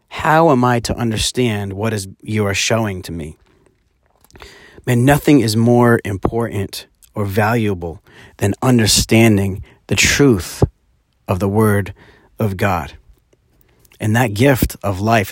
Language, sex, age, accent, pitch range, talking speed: English, male, 30-49, American, 95-120 Hz, 130 wpm